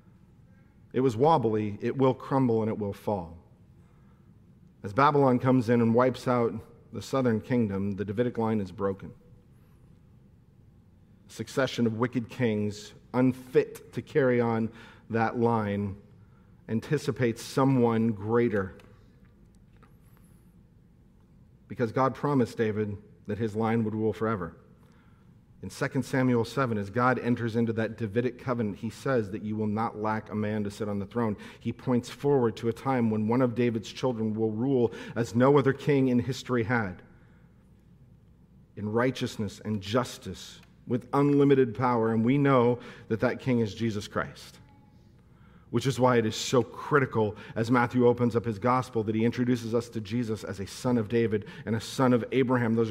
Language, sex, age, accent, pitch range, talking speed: English, male, 40-59, American, 110-135 Hz, 160 wpm